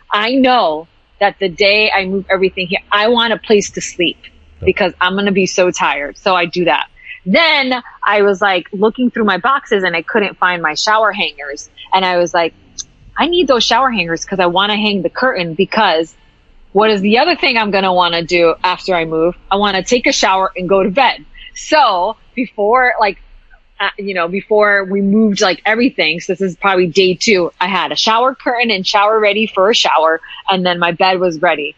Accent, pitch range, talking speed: American, 180-225 Hz, 220 wpm